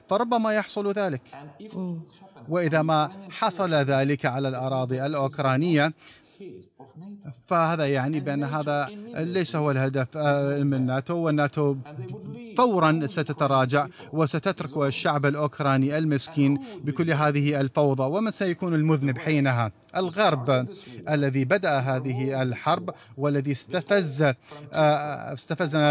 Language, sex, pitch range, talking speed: Arabic, male, 140-160 Hz, 90 wpm